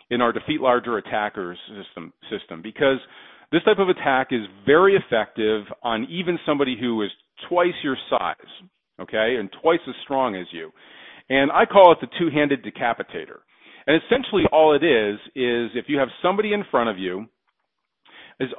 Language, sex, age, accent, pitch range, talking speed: English, male, 40-59, American, 115-155 Hz, 170 wpm